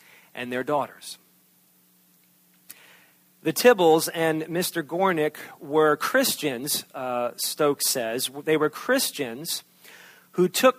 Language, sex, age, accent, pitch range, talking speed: English, male, 40-59, American, 120-160 Hz, 100 wpm